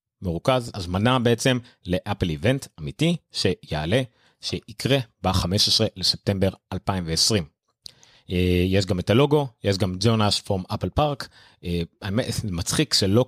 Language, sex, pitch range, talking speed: Hebrew, male, 90-120 Hz, 110 wpm